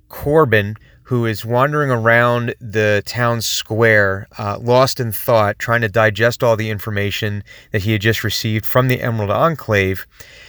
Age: 30-49